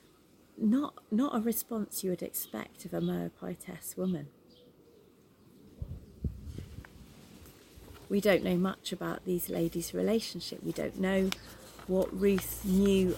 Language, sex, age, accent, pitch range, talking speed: English, female, 40-59, British, 160-210 Hz, 115 wpm